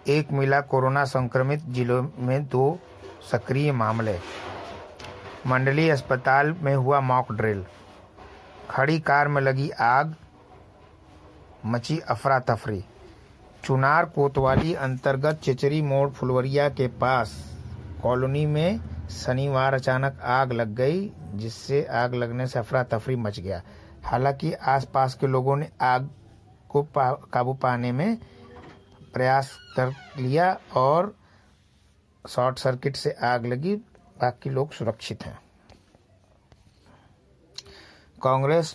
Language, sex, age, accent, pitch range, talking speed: Hindi, male, 60-79, native, 115-140 Hz, 105 wpm